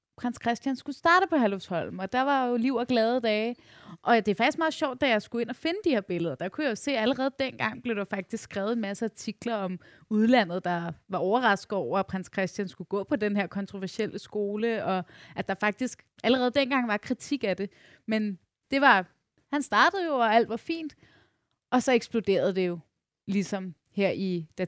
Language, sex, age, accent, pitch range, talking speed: Danish, female, 20-39, native, 195-250 Hz, 215 wpm